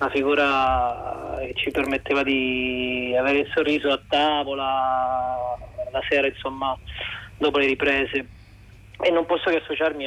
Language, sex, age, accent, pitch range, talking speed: Italian, male, 20-39, native, 130-155 Hz, 125 wpm